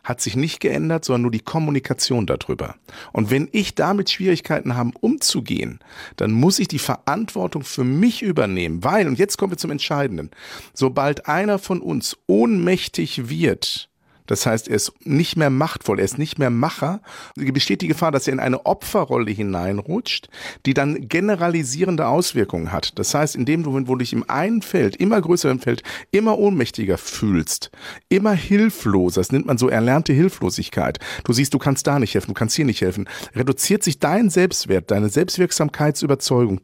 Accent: German